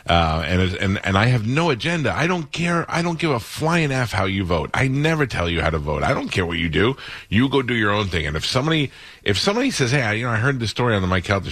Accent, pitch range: American, 85-120 Hz